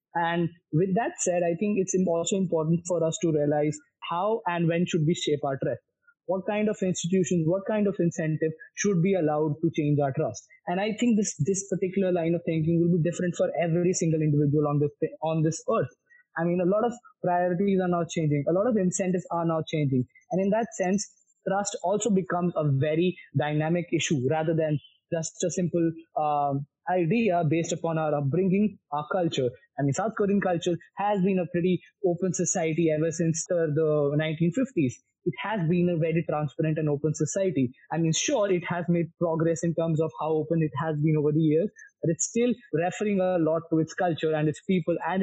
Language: English